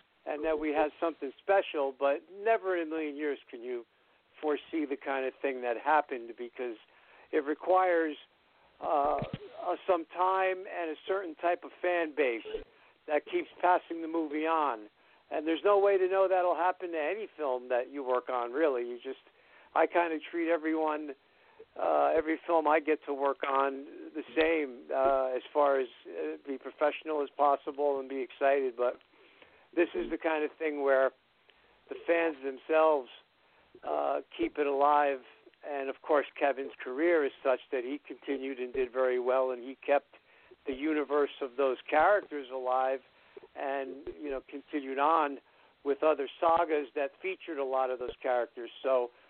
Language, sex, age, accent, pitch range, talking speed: English, male, 50-69, American, 135-170 Hz, 170 wpm